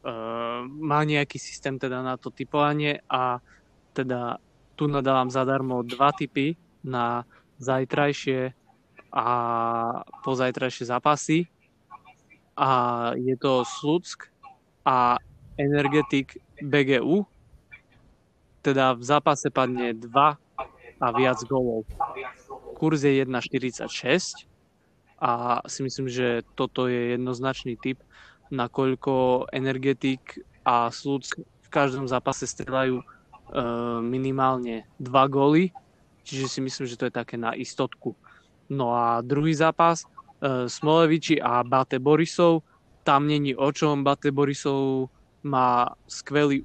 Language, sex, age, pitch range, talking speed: Slovak, male, 20-39, 125-145 Hz, 110 wpm